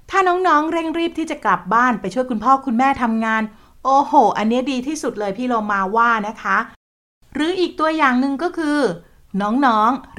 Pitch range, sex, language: 220-275 Hz, female, Thai